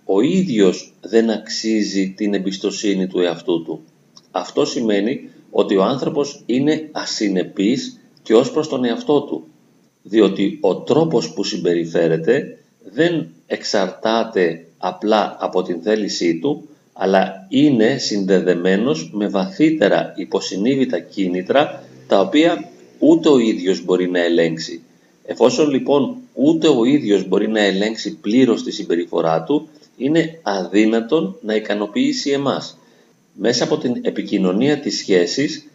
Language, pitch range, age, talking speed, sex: Greek, 95-150 Hz, 40-59, 120 wpm, male